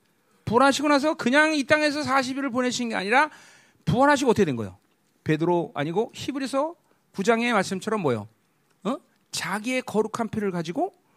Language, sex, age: Korean, male, 40-59